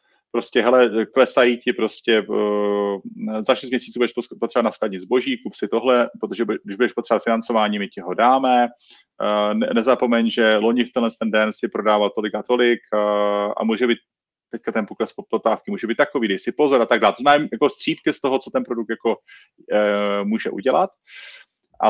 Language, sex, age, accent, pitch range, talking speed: Czech, male, 30-49, native, 110-125 Hz, 175 wpm